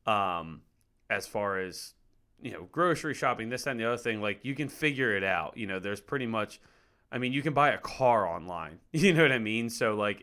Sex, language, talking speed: male, English, 230 wpm